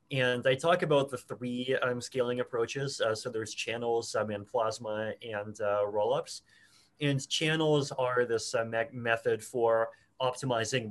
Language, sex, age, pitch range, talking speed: English, male, 20-39, 115-150 Hz, 160 wpm